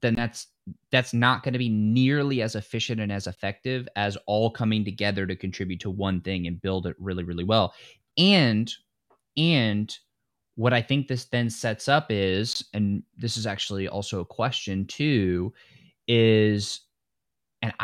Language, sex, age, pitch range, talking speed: English, male, 20-39, 100-125 Hz, 160 wpm